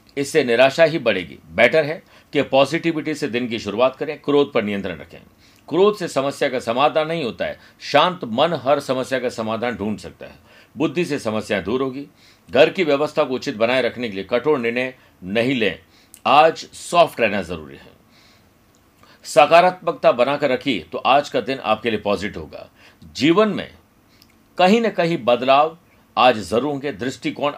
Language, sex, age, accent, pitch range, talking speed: Hindi, male, 50-69, native, 115-145 Hz, 170 wpm